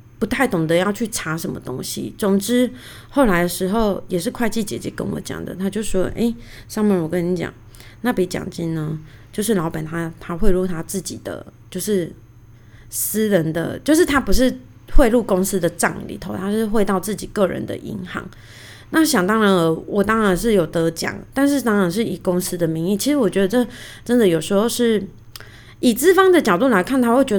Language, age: Chinese, 20-39